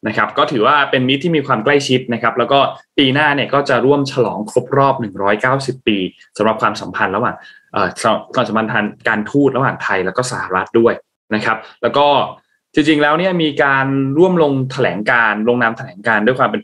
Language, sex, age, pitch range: Thai, male, 20-39, 110-145 Hz